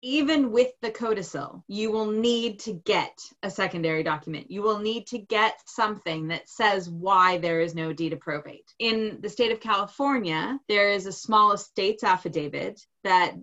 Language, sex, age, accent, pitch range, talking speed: English, female, 20-39, American, 180-220 Hz, 175 wpm